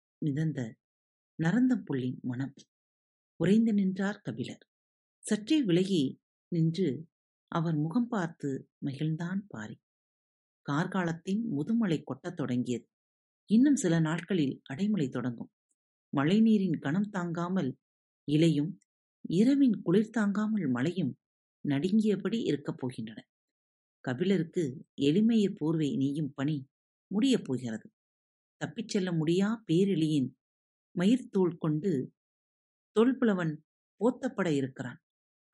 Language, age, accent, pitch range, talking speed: Tamil, 50-69, native, 135-200 Hz, 80 wpm